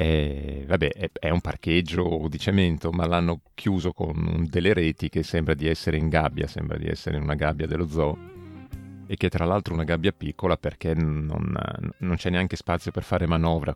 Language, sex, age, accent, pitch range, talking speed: Italian, male, 40-59, native, 80-90 Hz, 195 wpm